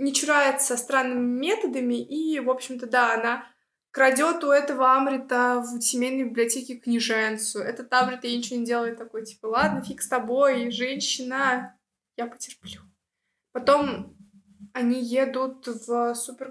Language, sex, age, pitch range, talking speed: Russian, female, 20-39, 235-265 Hz, 135 wpm